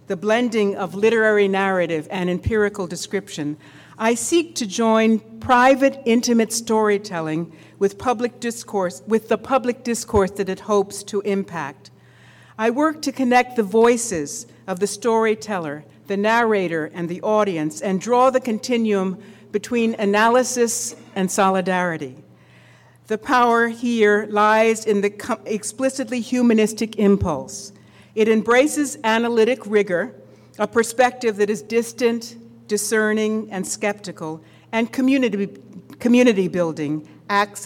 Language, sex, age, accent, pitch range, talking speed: English, female, 60-79, American, 190-230 Hz, 120 wpm